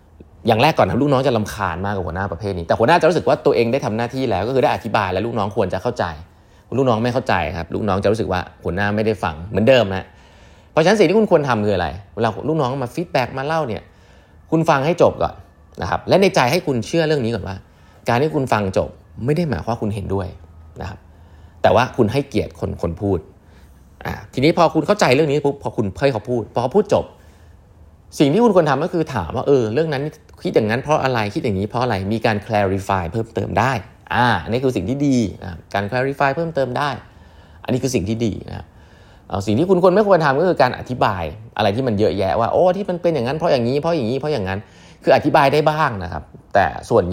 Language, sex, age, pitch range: Thai, male, 30-49, 95-135 Hz